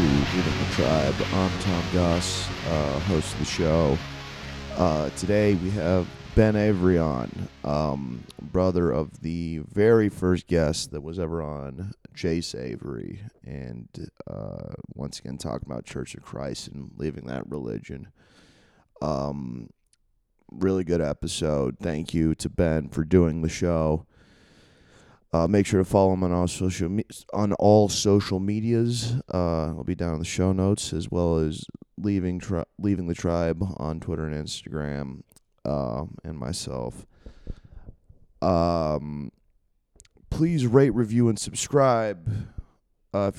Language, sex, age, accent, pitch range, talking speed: English, male, 30-49, American, 80-105 Hz, 140 wpm